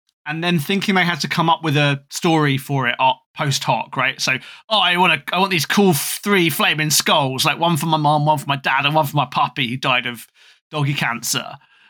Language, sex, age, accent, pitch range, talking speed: English, male, 20-39, British, 130-180 Hz, 235 wpm